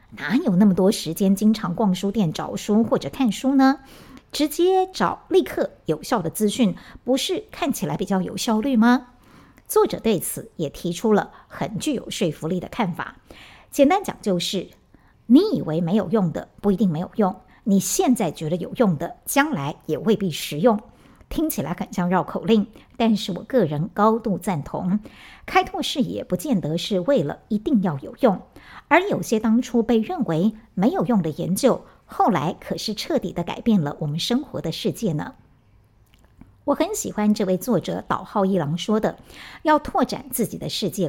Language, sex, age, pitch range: Chinese, male, 60-79, 180-245 Hz